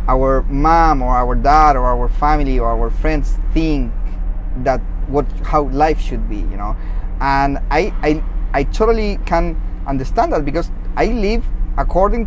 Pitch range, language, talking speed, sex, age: 130-170 Hz, English, 155 wpm, male, 30-49